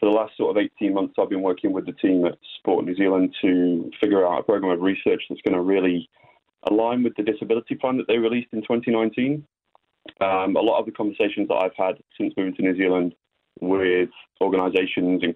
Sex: male